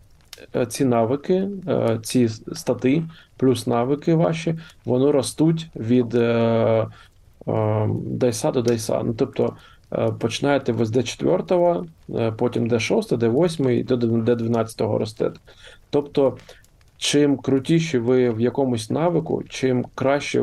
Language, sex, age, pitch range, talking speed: Ukrainian, male, 20-39, 115-130 Hz, 110 wpm